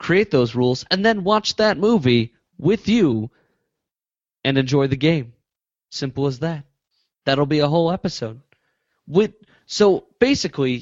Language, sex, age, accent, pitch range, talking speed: English, male, 30-49, American, 130-175 Hz, 140 wpm